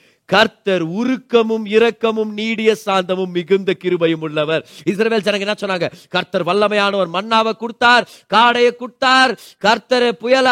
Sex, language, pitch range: male, Tamil, 180-255 Hz